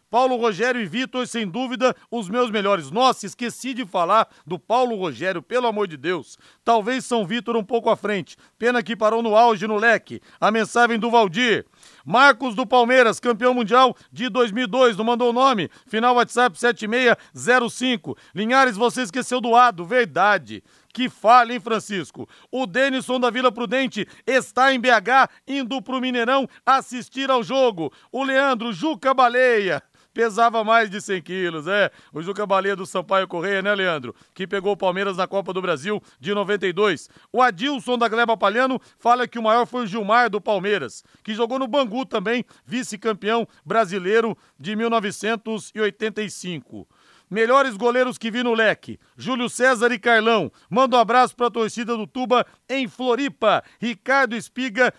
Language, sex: Portuguese, male